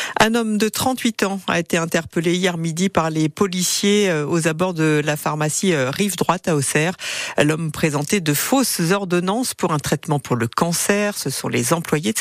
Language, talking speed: French, 180 wpm